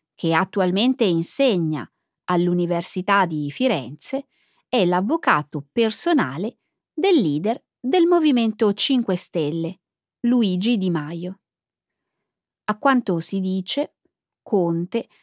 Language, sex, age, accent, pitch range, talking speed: Italian, female, 30-49, native, 175-255 Hz, 90 wpm